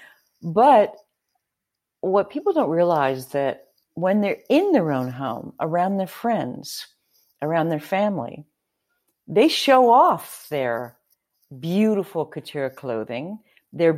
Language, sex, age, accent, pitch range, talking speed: English, female, 50-69, American, 135-190 Hz, 115 wpm